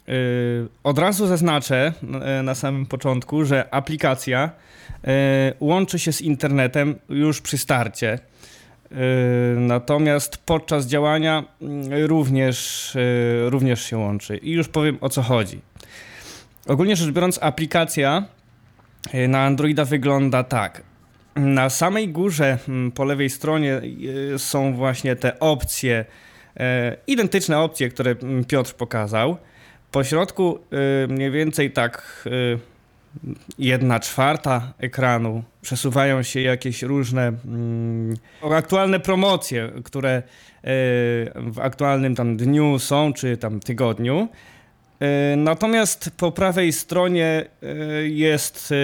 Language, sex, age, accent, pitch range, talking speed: Polish, male, 20-39, native, 125-155 Hz, 95 wpm